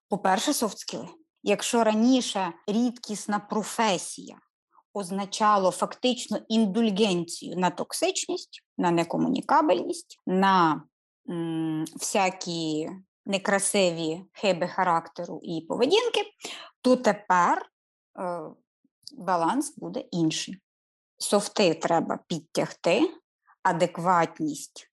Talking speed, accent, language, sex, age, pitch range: 75 wpm, native, Ukrainian, female, 20-39, 175-250 Hz